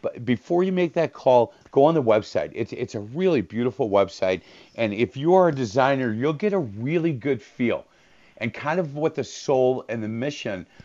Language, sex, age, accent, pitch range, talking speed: English, male, 50-69, American, 110-150 Hz, 200 wpm